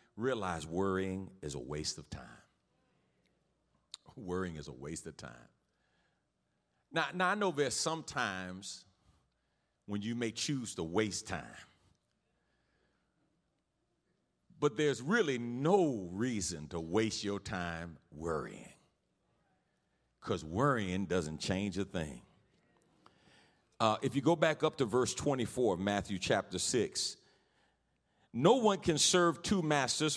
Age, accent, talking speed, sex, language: 50-69, American, 125 wpm, male, English